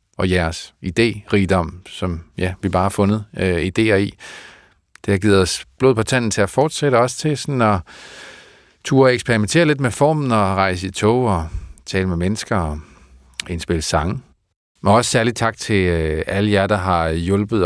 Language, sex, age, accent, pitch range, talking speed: Danish, male, 40-59, native, 90-110 Hz, 185 wpm